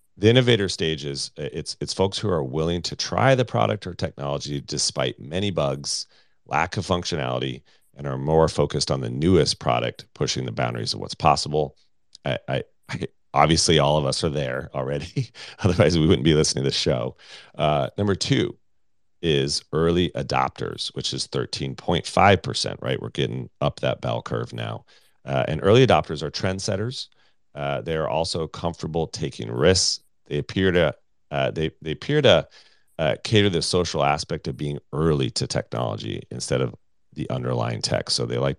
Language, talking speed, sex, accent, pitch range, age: English, 160 wpm, male, American, 70-95 Hz, 40-59